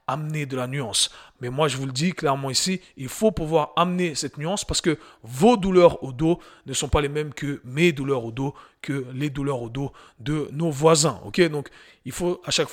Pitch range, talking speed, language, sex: 130-165 Hz, 225 wpm, French, male